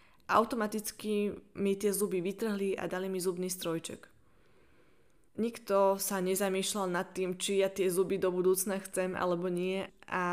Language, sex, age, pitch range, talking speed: Slovak, female, 20-39, 180-200 Hz, 145 wpm